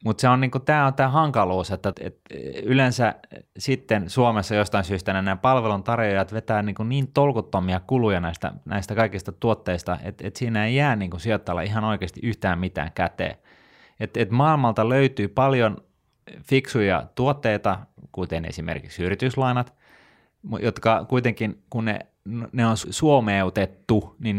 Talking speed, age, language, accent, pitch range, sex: 135 wpm, 30-49, Finnish, native, 95-120 Hz, male